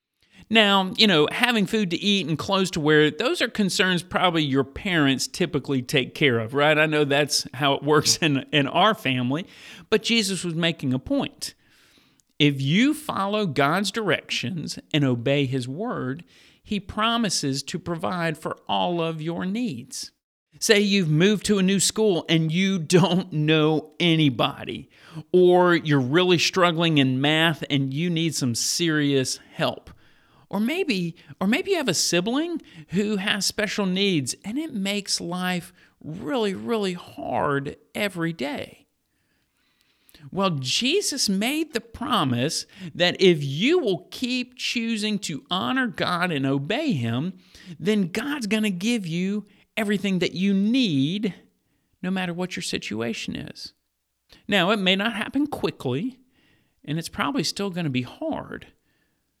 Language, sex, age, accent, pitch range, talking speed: English, male, 50-69, American, 150-210 Hz, 150 wpm